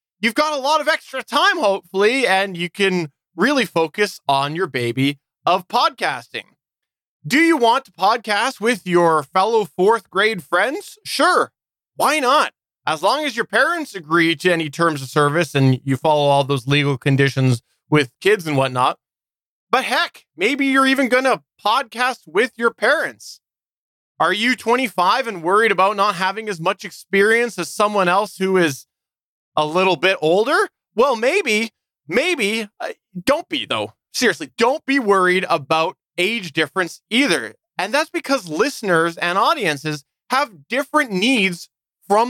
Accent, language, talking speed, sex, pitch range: American, English, 155 wpm, male, 170-250 Hz